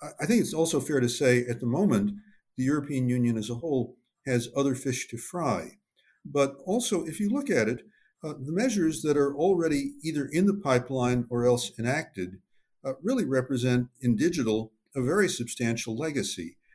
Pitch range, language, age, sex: 115-145 Hz, English, 50-69, male